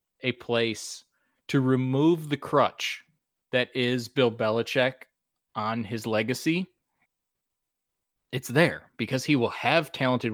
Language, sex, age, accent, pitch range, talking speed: English, male, 30-49, American, 110-140 Hz, 115 wpm